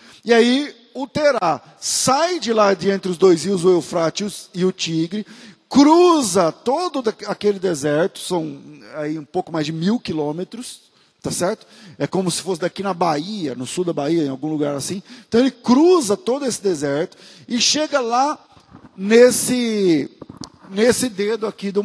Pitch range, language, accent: 175-240 Hz, Portuguese, Brazilian